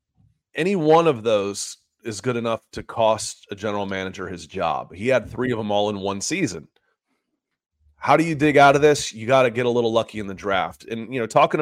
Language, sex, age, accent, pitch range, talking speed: English, male, 30-49, American, 105-150 Hz, 225 wpm